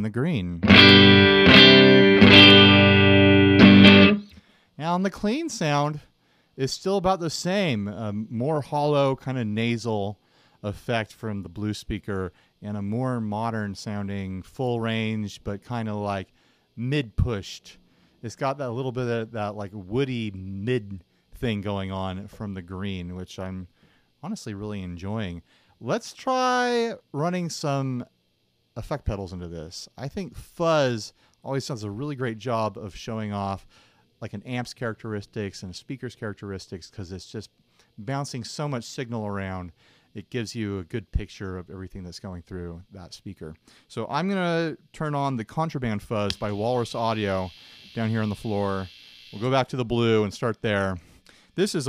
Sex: male